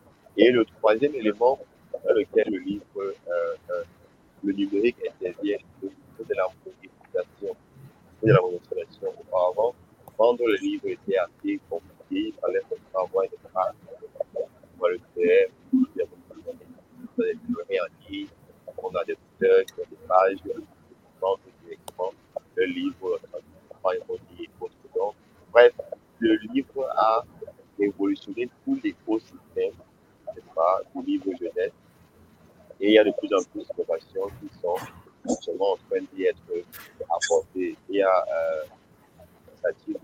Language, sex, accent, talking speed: French, male, French, 115 wpm